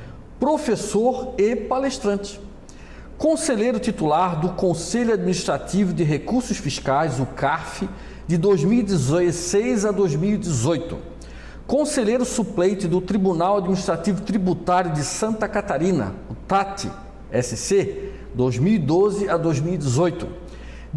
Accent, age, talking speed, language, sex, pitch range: Brazilian, 50-69, 90 wpm, Portuguese, male, 165-215 Hz